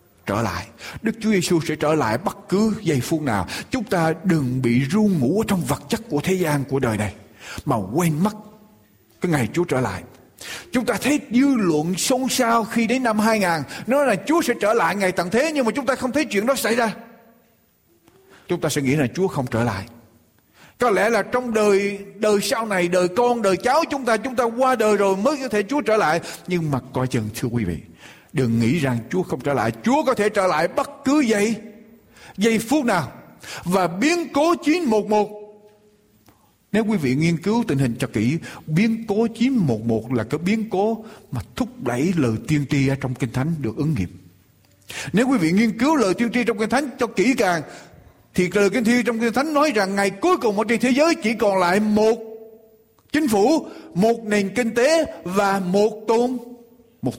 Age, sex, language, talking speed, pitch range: 60-79, male, Vietnamese, 215 wpm, 140-230 Hz